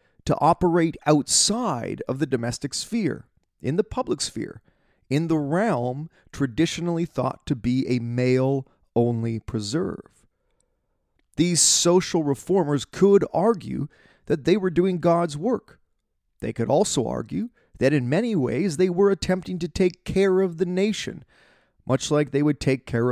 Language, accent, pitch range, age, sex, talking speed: English, American, 125-170 Hz, 30-49, male, 145 wpm